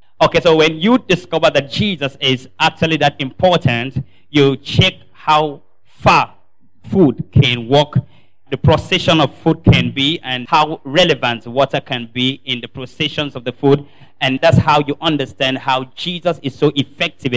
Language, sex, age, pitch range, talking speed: English, male, 30-49, 130-160 Hz, 160 wpm